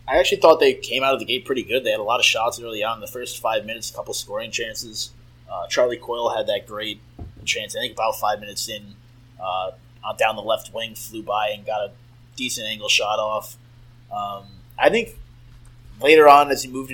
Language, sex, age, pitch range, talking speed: English, male, 20-39, 110-130 Hz, 220 wpm